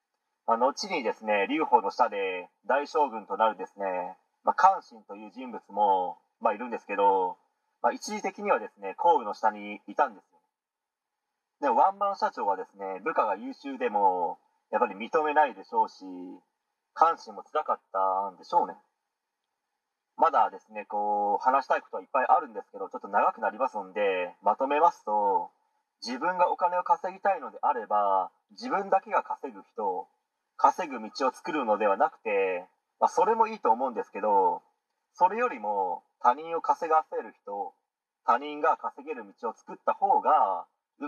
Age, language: 40-59, Japanese